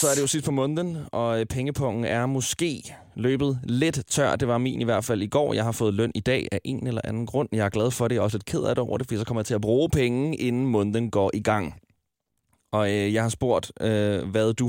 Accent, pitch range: native, 105-130 Hz